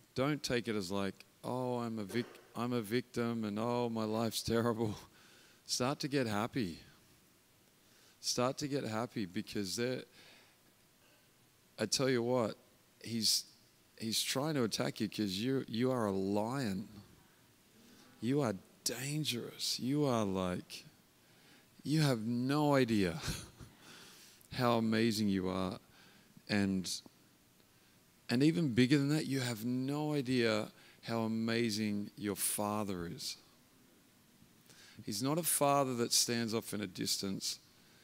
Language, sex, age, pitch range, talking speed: English, male, 40-59, 105-130 Hz, 130 wpm